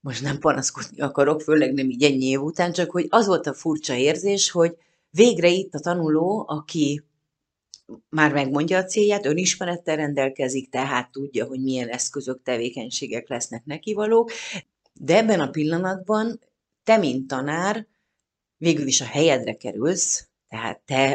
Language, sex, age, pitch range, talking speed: Hungarian, female, 30-49, 130-155 Hz, 145 wpm